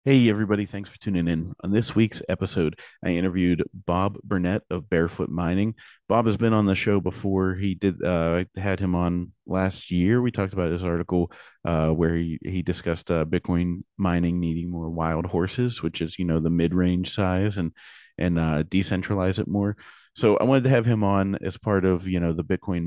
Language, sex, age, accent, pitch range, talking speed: English, male, 30-49, American, 85-100 Hz, 200 wpm